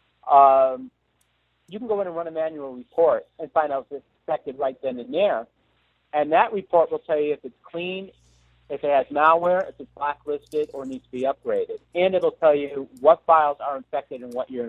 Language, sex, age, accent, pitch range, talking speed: English, male, 50-69, American, 140-180 Hz, 215 wpm